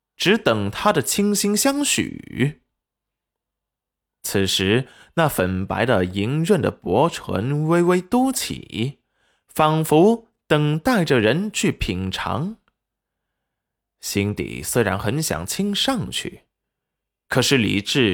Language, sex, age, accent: Chinese, male, 20-39, native